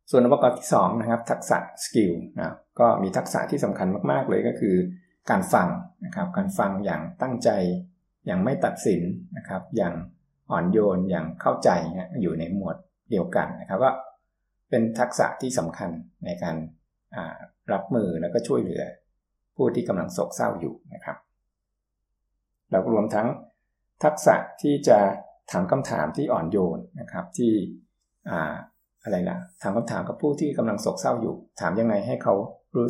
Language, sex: Thai, male